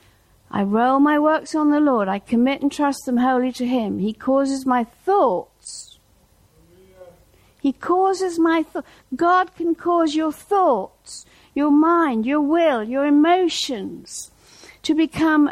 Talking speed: 140 wpm